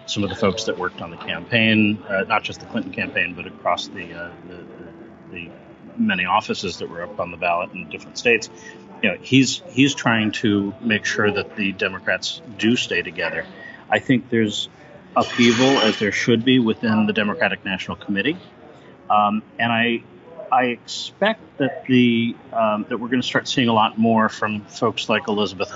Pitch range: 100-120 Hz